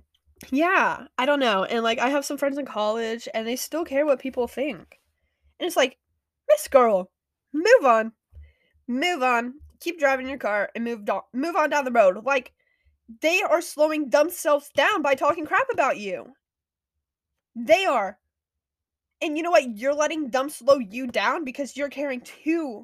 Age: 20-39